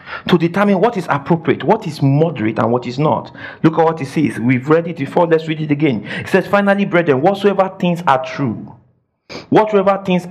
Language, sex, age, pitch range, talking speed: English, male, 50-69, 150-205 Hz, 205 wpm